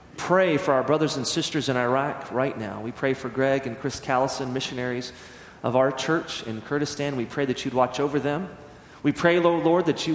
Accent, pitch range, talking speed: American, 120-155 Hz, 215 wpm